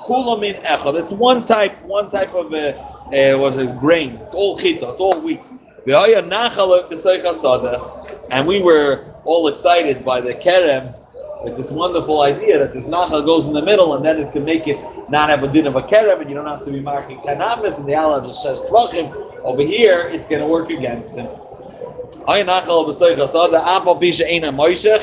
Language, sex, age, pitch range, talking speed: English, male, 30-49, 150-190 Hz, 165 wpm